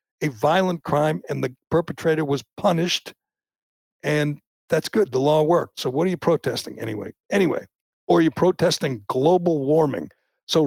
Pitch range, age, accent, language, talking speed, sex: 150-195 Hz, 60-79, American, English, 155 wpm, male